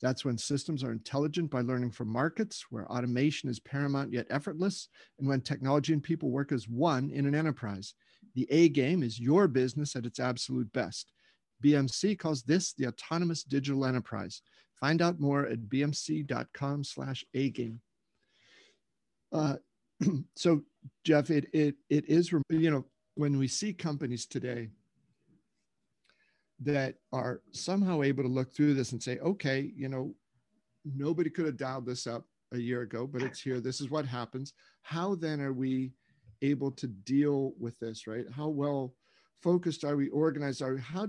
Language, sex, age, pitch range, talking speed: English, male, 50-69, 125-155 Hz, 160 wpm